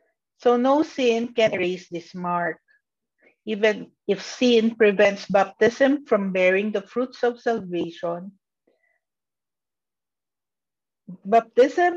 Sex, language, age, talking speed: female, English, 50-69, 95 wpm